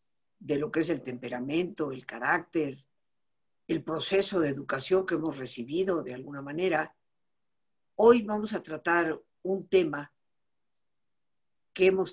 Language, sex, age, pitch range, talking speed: Spanish, female, 50-69, 150-195 Hz, 130 wpm